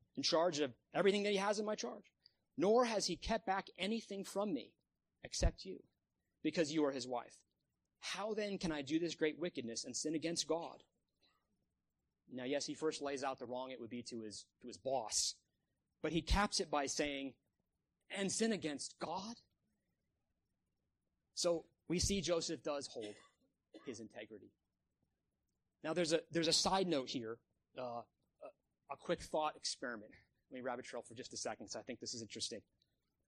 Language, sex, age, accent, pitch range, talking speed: English, male, 30-49, American, 125-180 Hz, 175 wpm